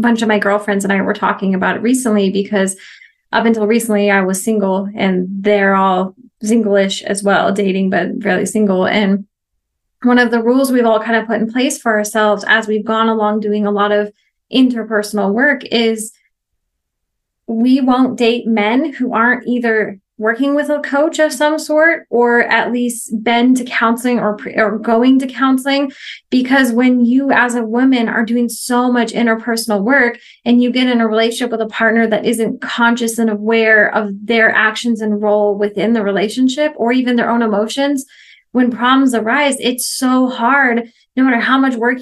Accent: American